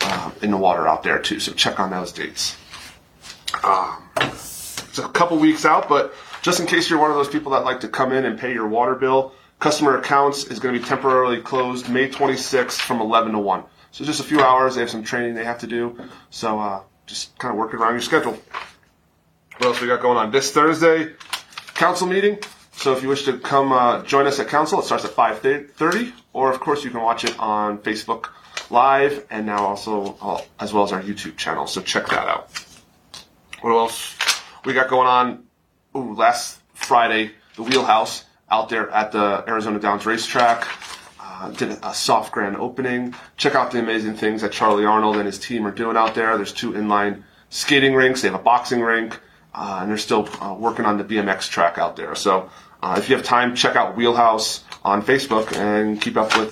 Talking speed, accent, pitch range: 210 wpm, American, 105-130 Hz